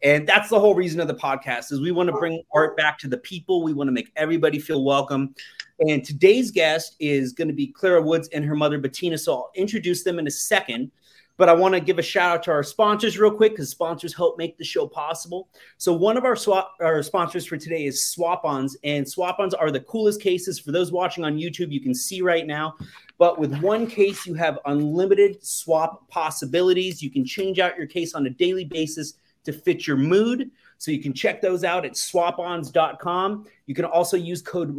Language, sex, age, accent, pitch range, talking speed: English, male, 30-49, American, 150-185 Hz, 225 wpm